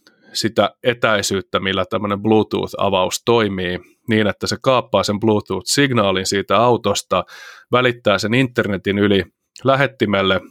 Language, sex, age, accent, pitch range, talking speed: Finnish, male, 30-49, native, 95-115 Hz, 110 wpm